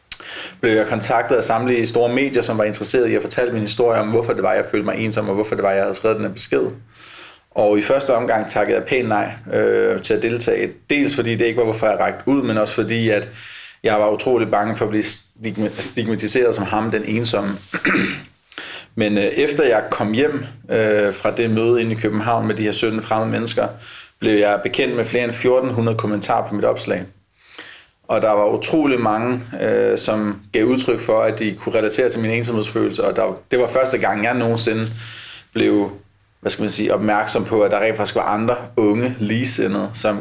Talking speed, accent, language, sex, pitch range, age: 205 wpm, native, Danish, male, 105-120 Hz, 30-49